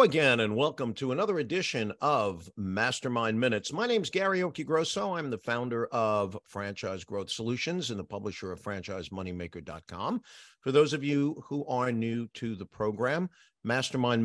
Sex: male